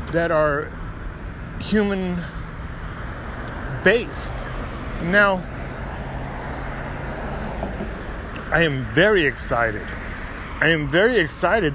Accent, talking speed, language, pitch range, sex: American, 65 wpm, English, 110-175 Hz, male